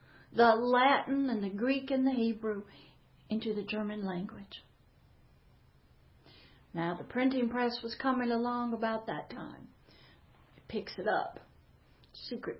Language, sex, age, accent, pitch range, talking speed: English, female, 60-79, American, 220-275 Hz, 130 wpm